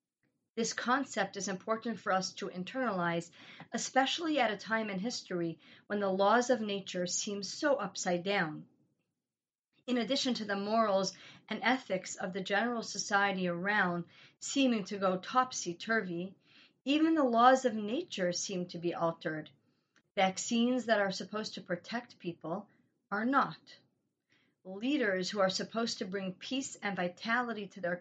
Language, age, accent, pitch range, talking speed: English, 40-59, American, 185-240 Hz, 145 wpm